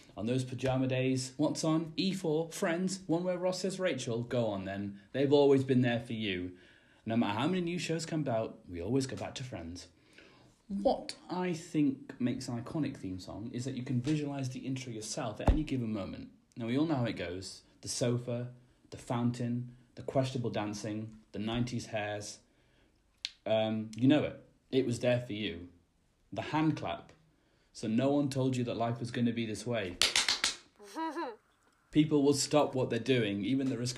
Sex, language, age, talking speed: male, English, 30-49, 190 wpm